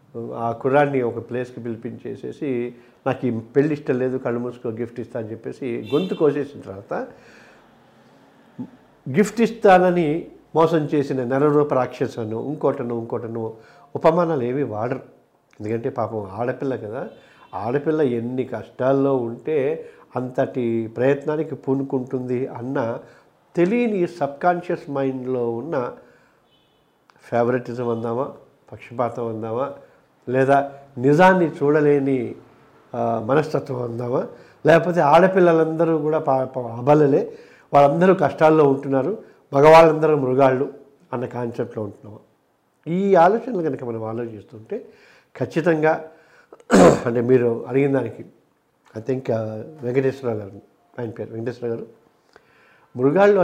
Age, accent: 50-69, native